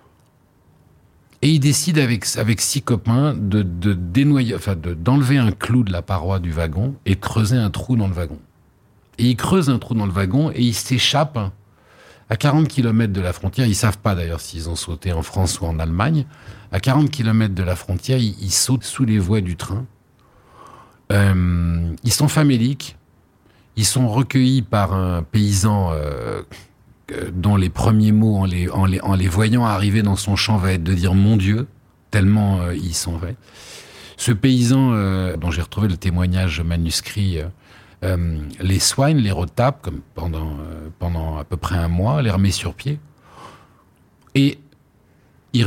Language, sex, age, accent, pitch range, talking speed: French, male, 50-69, French, 95-125 Hz, 185 wpm